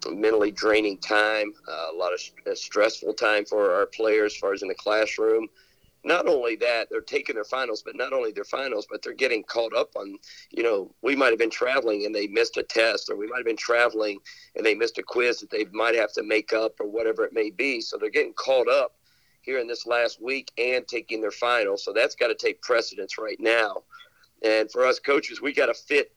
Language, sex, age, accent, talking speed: English, male, 50-69, American, 230 wpm